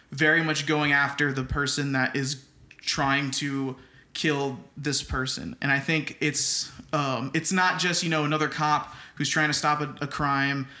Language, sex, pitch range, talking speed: English, male, 135-155 Hz, 180 wpm